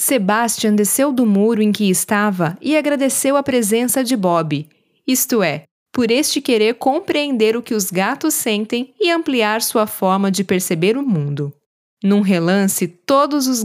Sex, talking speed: female, 160 wpm